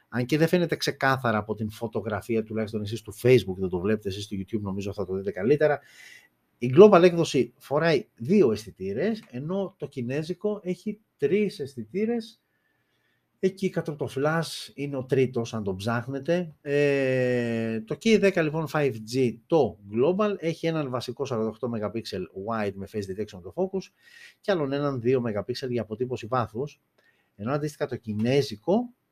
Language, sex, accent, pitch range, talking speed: Greek, male, native, 115-155 Hz, 155 wpm